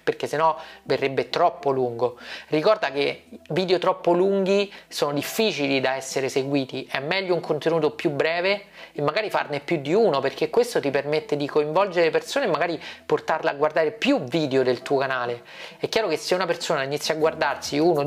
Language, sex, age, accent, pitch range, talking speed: Italian, male, 30-49, native, 140-175 Hz, 185 wpm